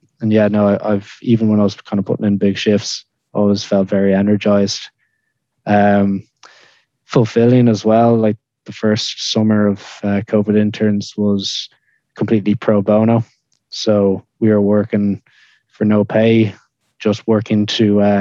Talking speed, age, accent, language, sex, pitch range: 150 wpm, 20-39, Irish, English, male, 100-110 Hz